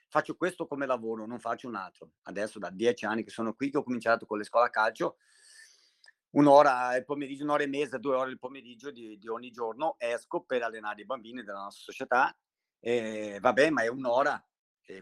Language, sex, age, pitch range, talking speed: Italian, male, 50-69, 115-145 Hz, 205 wpm